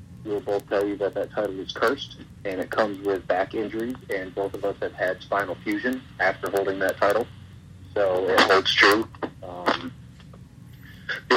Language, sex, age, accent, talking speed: English, male, 30-49, American, 175 wpm